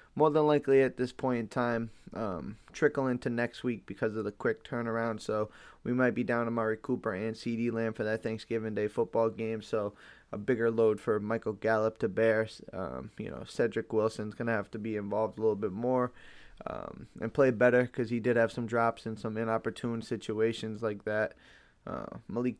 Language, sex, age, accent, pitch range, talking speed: English, male, 20-39, American, 115-130 Hz, 200 wpm